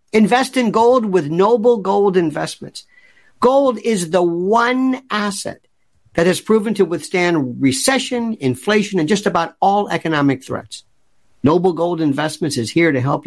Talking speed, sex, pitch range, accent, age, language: 145 wpm, male, 145-210 Hz, American, 50-69, English